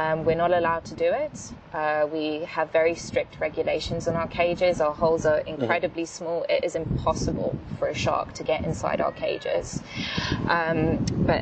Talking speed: 180 wpm